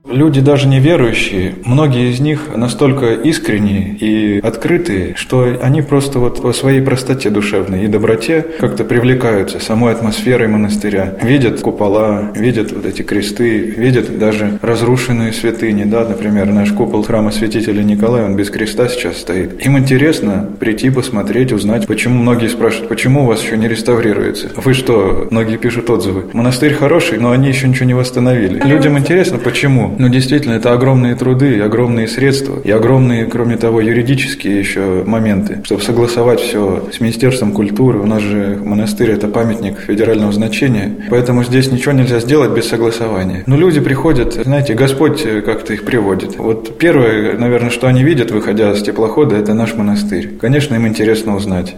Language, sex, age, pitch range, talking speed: Russian, male, 20-39, 110-130 Hz, 160 wpm